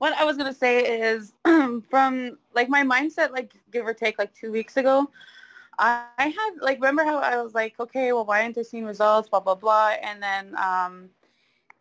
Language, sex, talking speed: English, female, 205 wpm